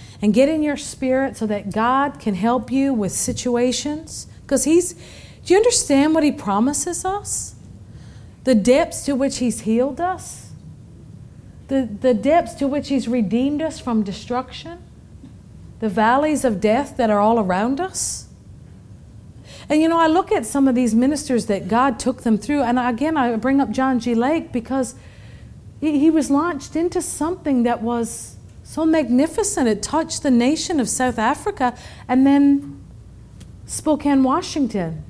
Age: 50-69